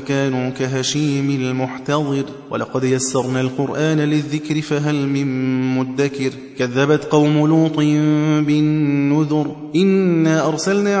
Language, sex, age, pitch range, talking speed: Persian, male, 20-39, 135-155 Hz, 85 wpm